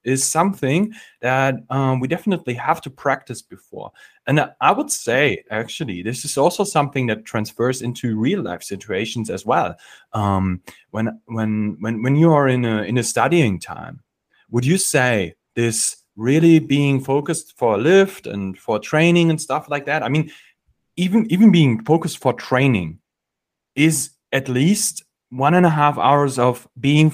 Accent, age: German, 30-49